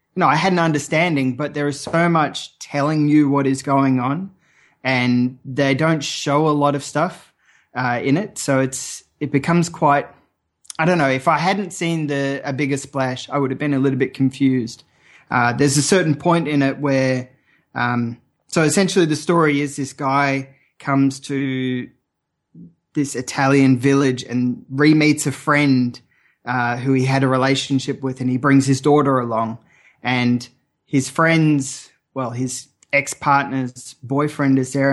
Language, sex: English, male